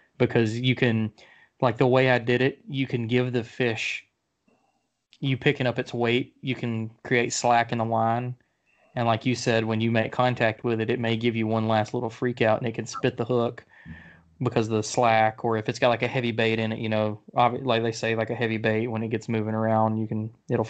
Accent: American